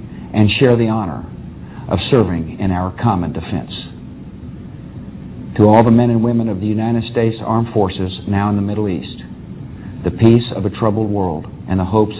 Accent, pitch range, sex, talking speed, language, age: American, 95-120 Hz, male, 175 wpm, English, 50-69